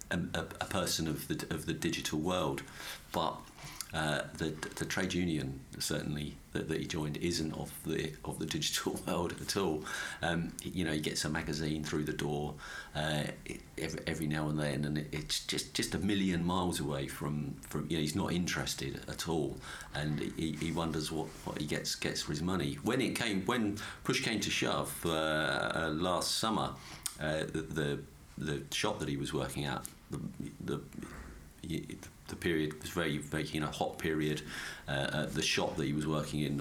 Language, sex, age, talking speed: English, male, 50-69, 185 wpm